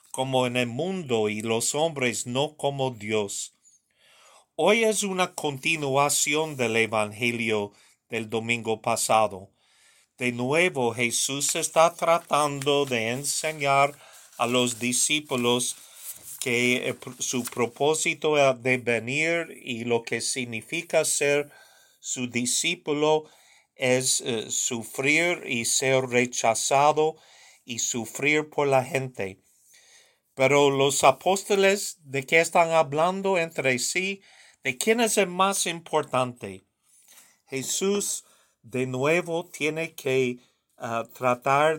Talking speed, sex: 105 wpm, male